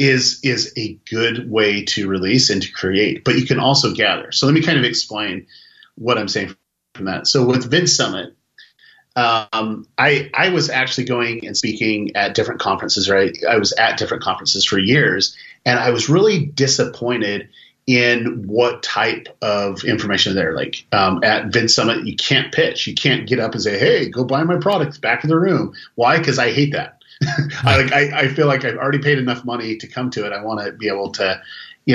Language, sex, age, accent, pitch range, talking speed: English, male, 30-49, American, 110-135 Hz, 205 wpm